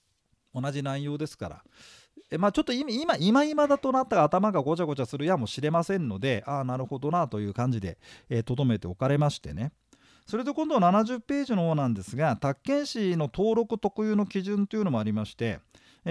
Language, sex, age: Japanese, male, 40-59